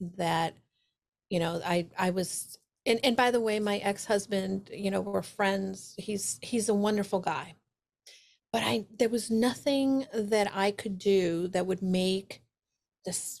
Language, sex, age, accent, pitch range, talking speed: English, female, 40-59, American, 175-210 Hz, 155 wpm